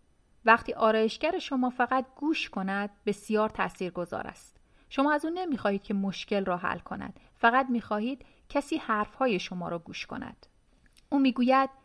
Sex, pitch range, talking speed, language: female, 205-260 Hz, 140 wpm, Persian